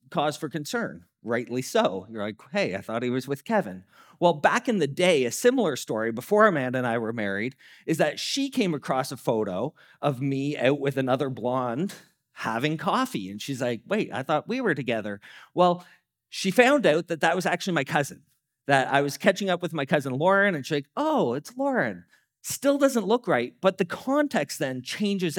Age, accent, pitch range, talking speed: 40-59, American, 135-190 Hz, 205 wpm